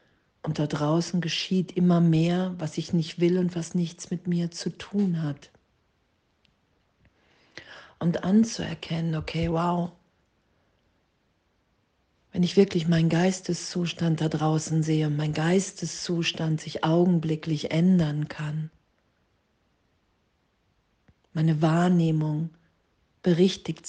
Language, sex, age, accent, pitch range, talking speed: German, female, 50-69, German, 150-175 Hz, 100 wpm